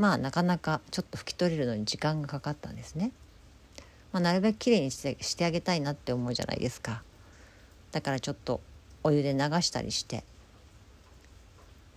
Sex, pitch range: female, 90-150 Hz